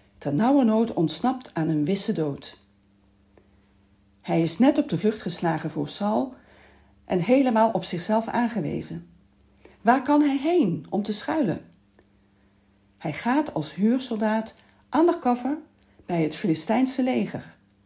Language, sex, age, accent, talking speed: Dutch, female, 40-59, Dutch, 135 wpm